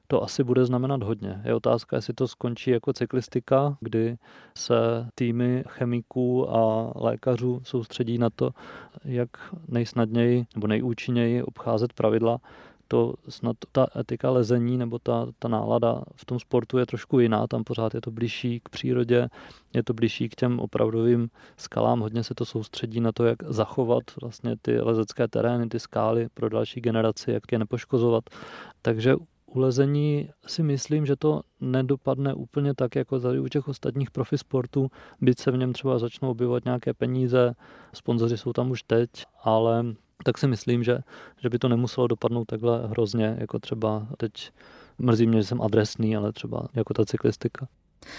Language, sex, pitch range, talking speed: Czech, male, 115-130 Hz, 160 wpm